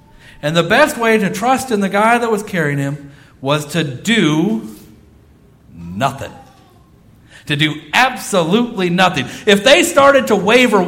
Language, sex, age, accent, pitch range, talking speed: English, male, 50-69, American, 140-220 Hz, 145 wpm